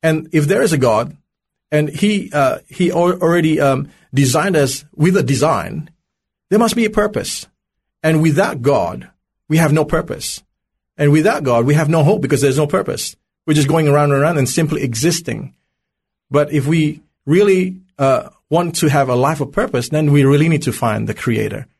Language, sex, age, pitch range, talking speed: English, male, 40-59, 120-160 Hz, 195 wpm